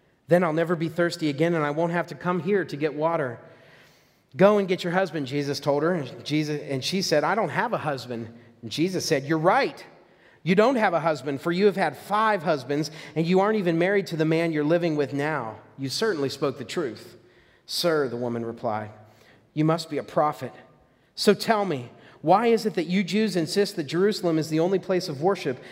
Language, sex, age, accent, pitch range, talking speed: English, male, 40-59, American, 125-170 Hz, 215 wpm